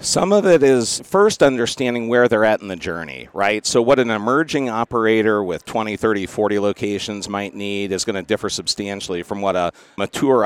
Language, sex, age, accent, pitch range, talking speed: English, male, 50-69, American, 100-120 Hz, 195 wpm